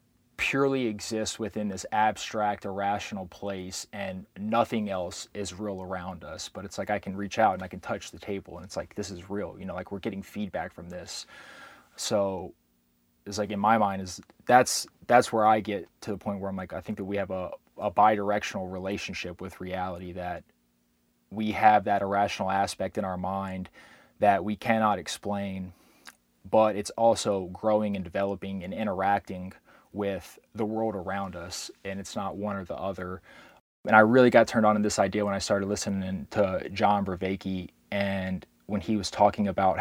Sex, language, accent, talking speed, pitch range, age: male, English, American, 190 wpm, 95-105 Hz, 20-39